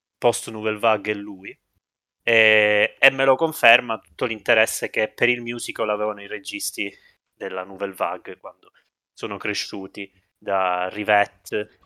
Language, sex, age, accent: Italian, male, 20-39, native